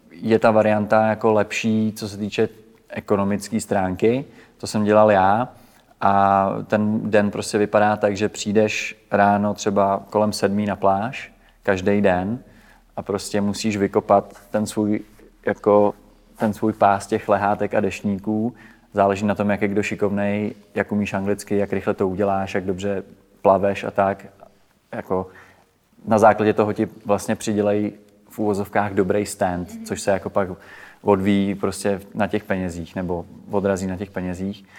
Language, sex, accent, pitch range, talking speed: Czech, male, native, 100-110 Hz, 155 wpm